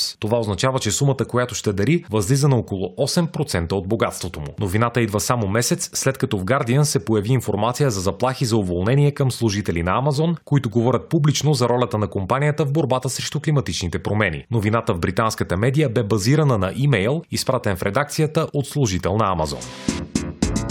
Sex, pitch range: male, 110-145 Hz